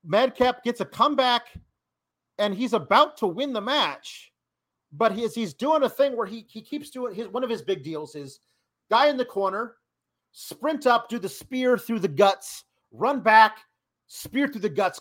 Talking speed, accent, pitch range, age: 190 wpm, American, 175-255 Hz, 40-59